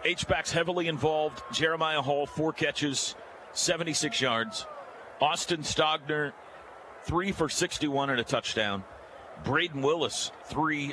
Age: 50-69